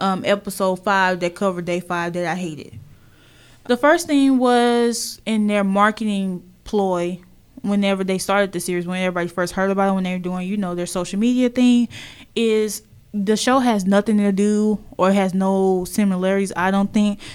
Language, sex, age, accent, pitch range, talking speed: English, female, 10-29, American, 180-210 Hz, 185 wpm